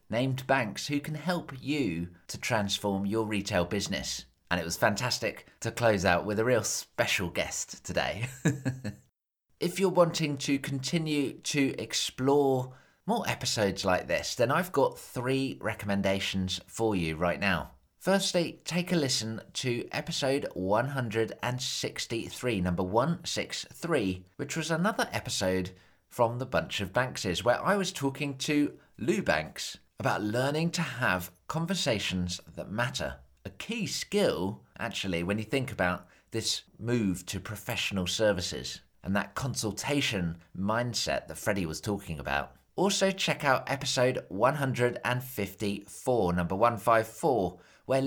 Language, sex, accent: English, male, British